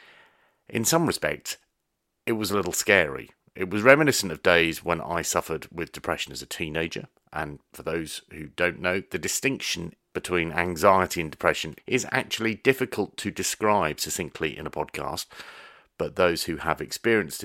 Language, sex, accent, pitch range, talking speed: English, male, British, 80-100 Hz, 160 wpm